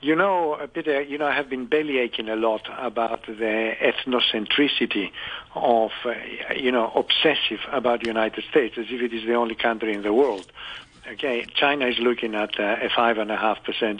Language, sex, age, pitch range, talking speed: English, male, 50-69, 115-150 Hz, 175 wpm